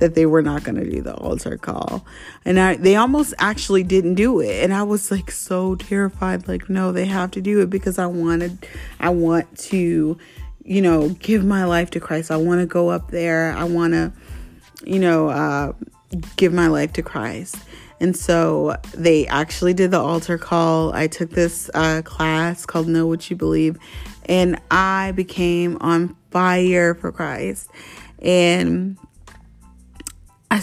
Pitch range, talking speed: 160-190 Hz, 170 wpm